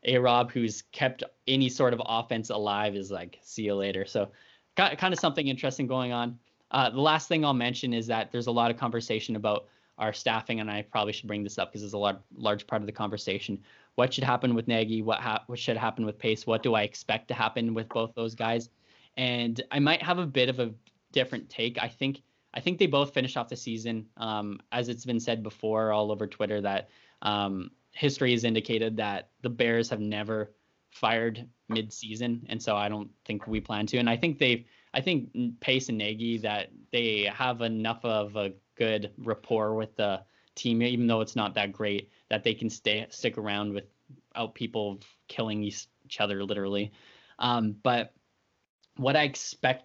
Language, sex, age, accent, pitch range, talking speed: English, male, 10-29, American, 105-125 Hz, 200 wpm